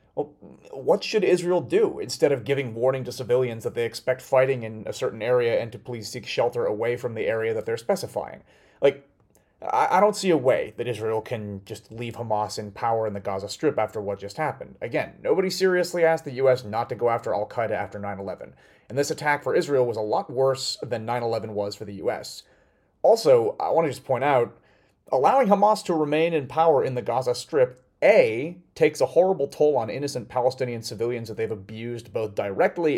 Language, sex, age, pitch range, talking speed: English, male, 30-49, 110-170 Hz, 205 wpm